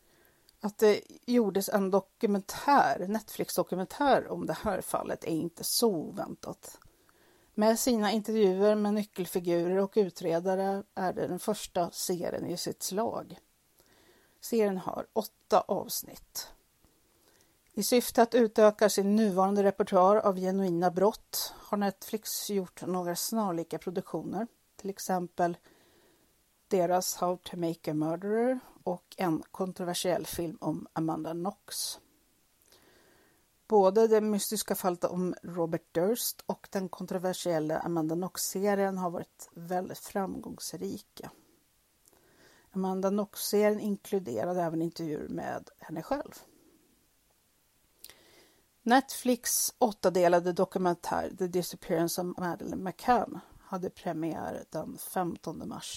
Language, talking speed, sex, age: Swedish, 110 wpm, female, 40-59